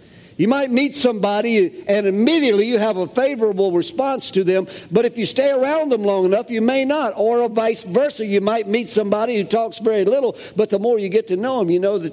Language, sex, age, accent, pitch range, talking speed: English, male, 50-69, American, 170-230 Hz, 230 wpm